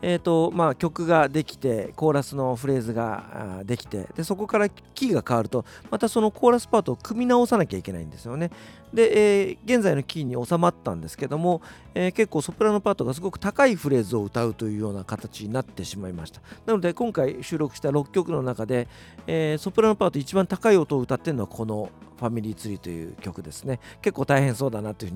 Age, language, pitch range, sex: 40-59, Japanese, 100-165 Hz, male